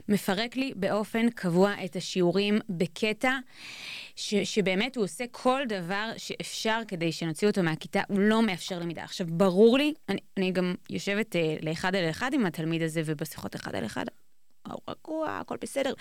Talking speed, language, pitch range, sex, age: 165 wpm, Hebrew, 190-240 Hz, female, 20-39